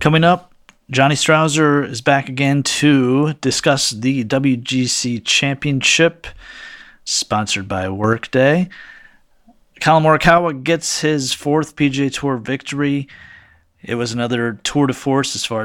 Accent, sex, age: American, male, 30-49